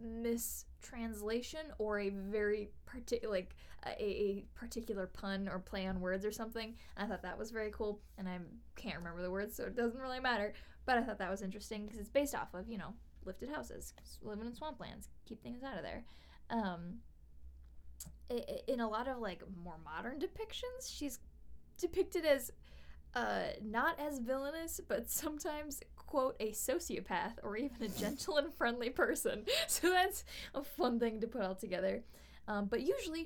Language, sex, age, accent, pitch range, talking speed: English, female, 10-29, American, 190-260 Hz, 175 wpm